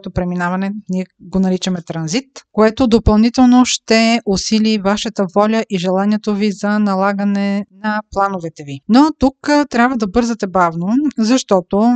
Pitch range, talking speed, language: 205-245 Hz, 130 wpm, Bulgarian